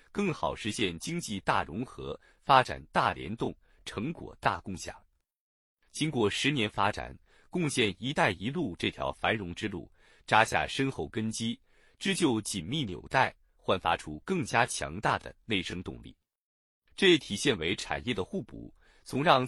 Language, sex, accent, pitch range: Chinese, male, native, 95-145 Hz